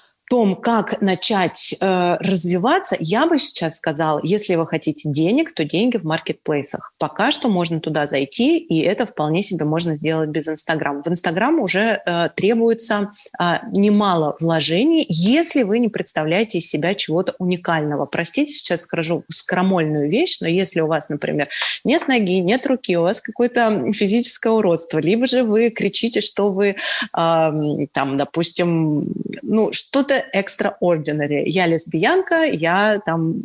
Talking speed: 145 wpm